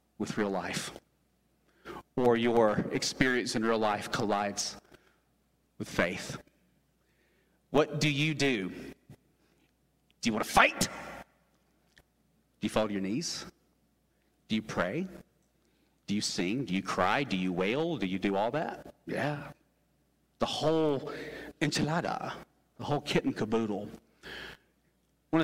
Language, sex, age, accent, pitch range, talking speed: English, male, 40-59, American, 115-170 Hz, 125 wpm